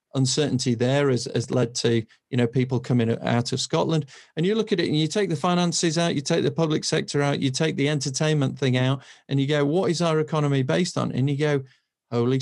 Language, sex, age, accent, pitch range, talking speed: English, male, 40-59, British, 130-160 Hz, 235 wpm